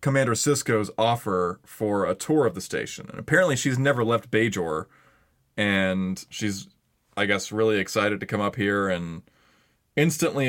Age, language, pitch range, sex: 20-39, English, 95-115 Hz, male